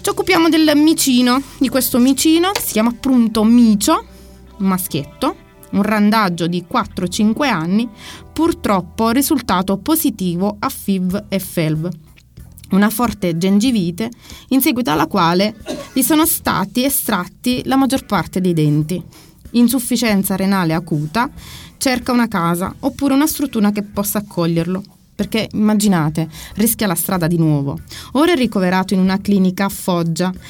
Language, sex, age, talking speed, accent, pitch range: Italian, female, 20-39, 135 wpm, native, 185-250 Hz